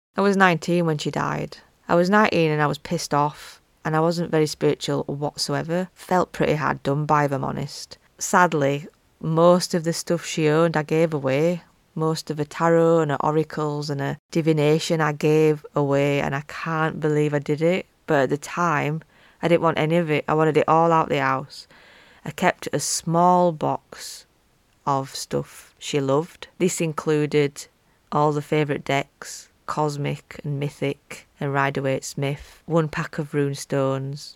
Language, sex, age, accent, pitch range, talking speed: English, female, 20-39, British, 140-160 Hz, 175 wpm